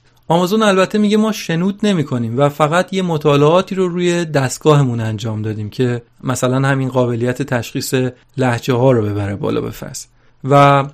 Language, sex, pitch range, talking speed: Persian, male, 125-165 Hz, 150 wpm